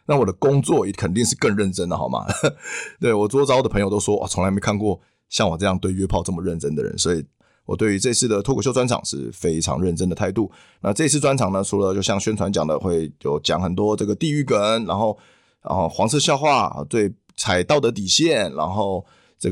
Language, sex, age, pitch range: Chinese, male, 20-39, 90-120 Hz